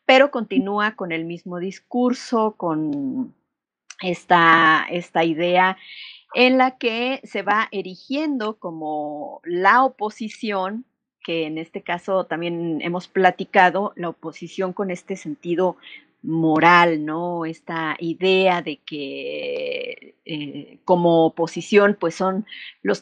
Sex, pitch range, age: female, 170-230 Hz, 40-59